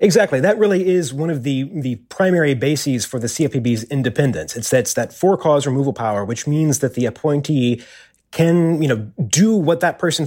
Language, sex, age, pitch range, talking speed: English, male, 30-49, 120-150 Hz, 185 wpm